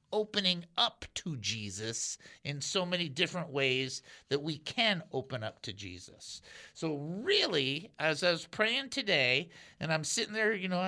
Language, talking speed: English, 160 wpm